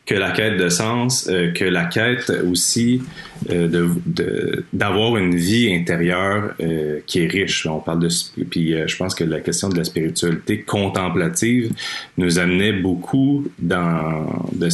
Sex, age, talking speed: male, 30-49, 145 wpm